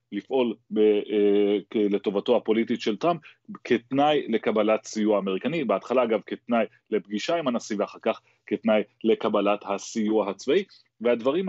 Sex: male